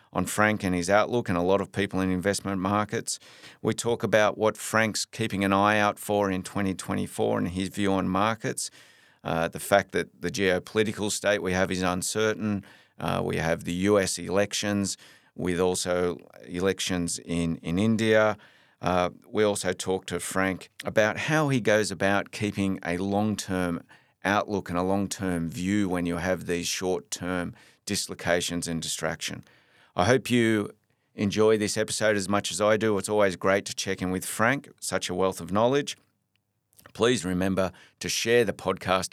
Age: 40-59